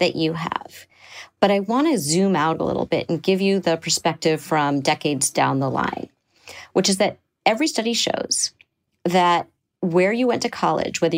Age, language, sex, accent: 40-59, English, female, American